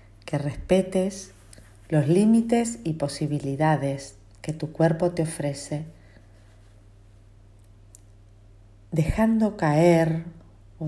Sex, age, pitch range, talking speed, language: female, 40-59, 100-165 Hz, 75 wpm, Spanish